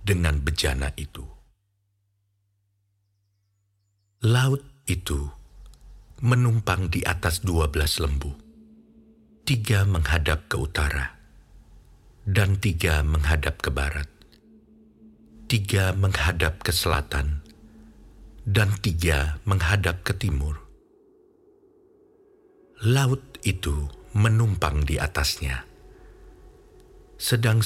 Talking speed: 75 wpm